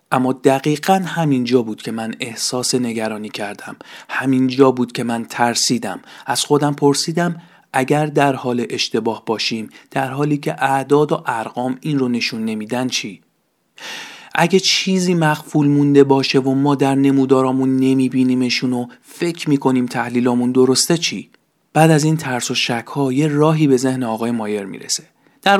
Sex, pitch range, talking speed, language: male, 125-155 Hz, 150 wpm, Persian